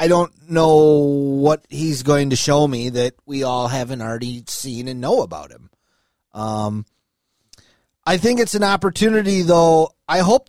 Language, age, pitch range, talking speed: English, 30-49, 140-190 Hz, 160 wpm